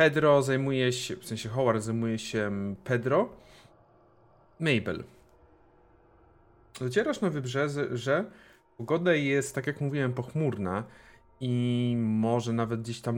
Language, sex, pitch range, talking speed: Polish, male, 95-120 Hz, 115 wpm